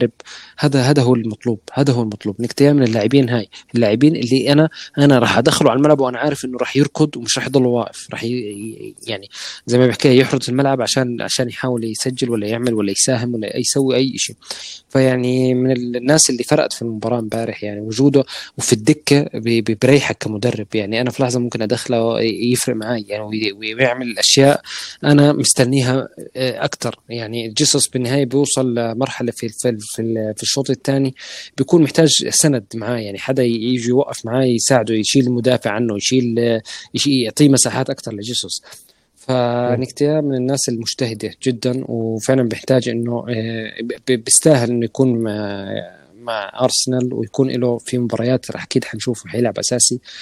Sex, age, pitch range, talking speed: male, 20-39, 115-135 Hz, 150 wpm